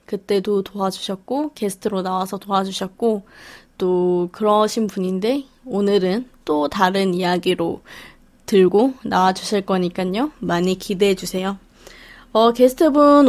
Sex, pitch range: female, 195-245 Hz